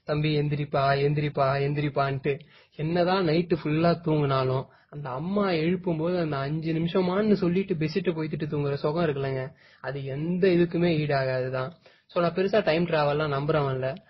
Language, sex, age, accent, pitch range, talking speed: Tamil, male, 20-39, native, 150-180 Hz, 140 wpm